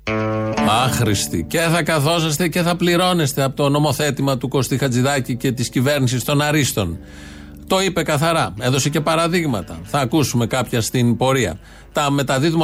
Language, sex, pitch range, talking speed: Greek, male, 120-160 Hz, 145 wpm